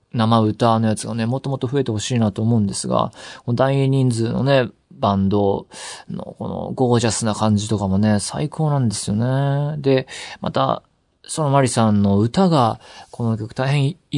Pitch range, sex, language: 100-145 Hz, male, Japanese